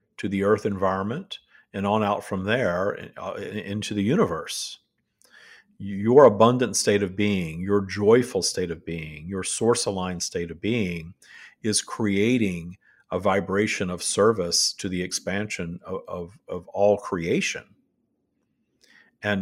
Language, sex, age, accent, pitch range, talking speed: English, male, 50-69, American, 90-105 Hz, 130 wpm